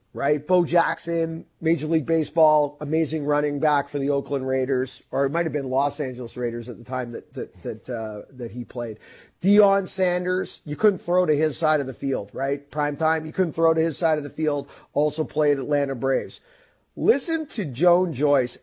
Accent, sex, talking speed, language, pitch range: American, male, 195 wpm, English, 145-225 Hz